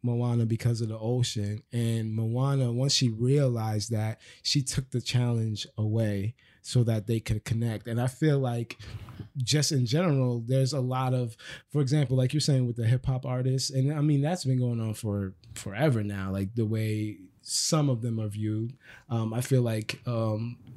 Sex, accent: male, American